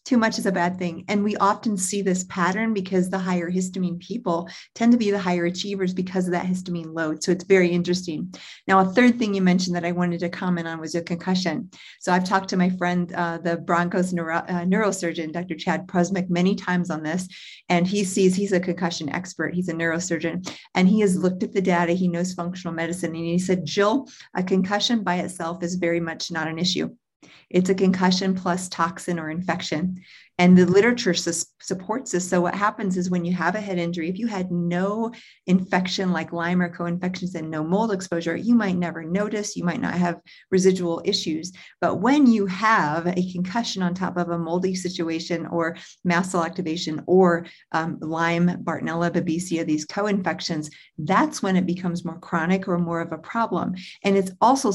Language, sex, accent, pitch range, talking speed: English, female, American, 170-190 Hz, 205 wpm